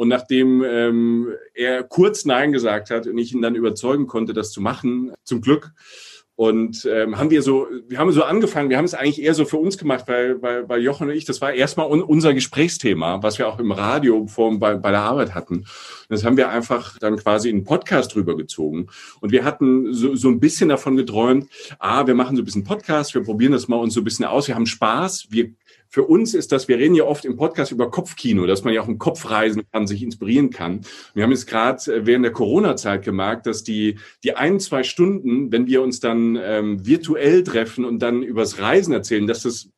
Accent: German